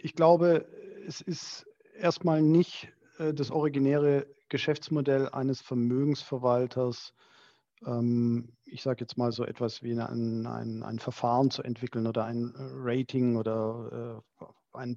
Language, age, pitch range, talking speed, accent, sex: German, 40-59, 115-140 Hz, 115 wpm, German, male